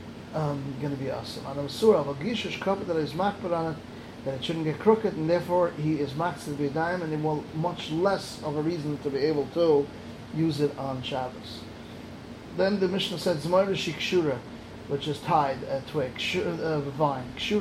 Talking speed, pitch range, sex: 185 wpm, 145-185 Hz, male